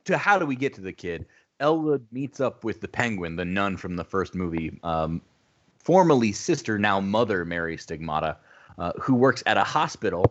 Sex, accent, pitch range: male, American, 95-140 Hz